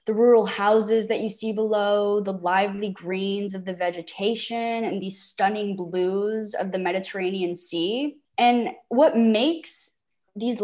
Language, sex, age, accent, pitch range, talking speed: English, female, 10-29, American, 195-240 Hz, 140 wpm